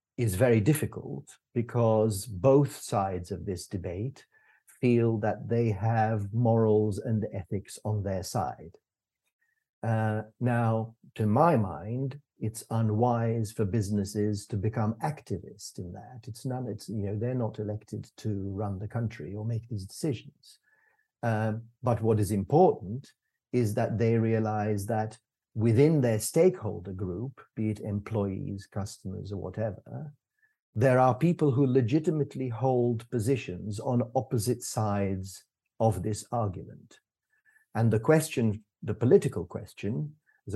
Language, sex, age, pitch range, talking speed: English, male, 50-69, 105-130 Hz, 130 wpm